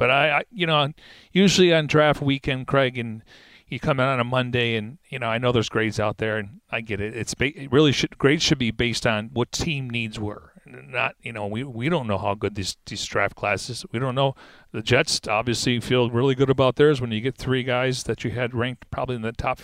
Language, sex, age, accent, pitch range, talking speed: English, male, 40-59, American, 110-140 Hz, 245 wpm